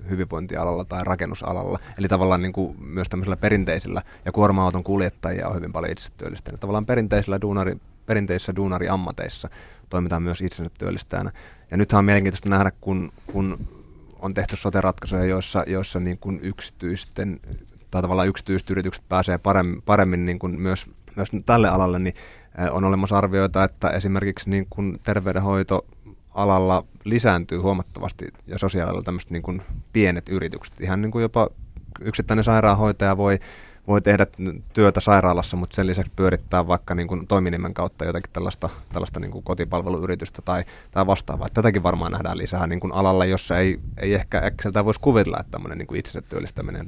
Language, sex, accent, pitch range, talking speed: Finnish, male, native, 90-100 Hz, 135 wpm